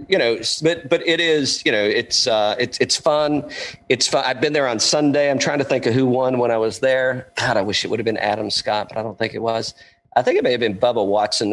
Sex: male